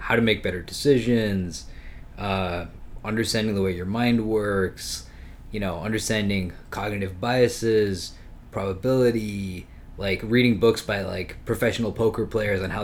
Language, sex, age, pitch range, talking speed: English, male, 20-39, 95-115 Hz, 130 wpm